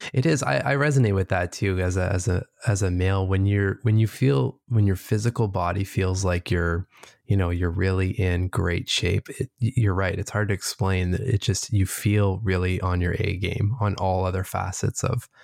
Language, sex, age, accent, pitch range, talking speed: English, male, 20-39, American, 95-110 Hz, 220 wpm